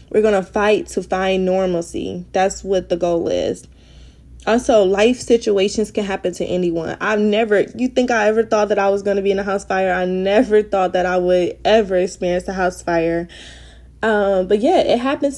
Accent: American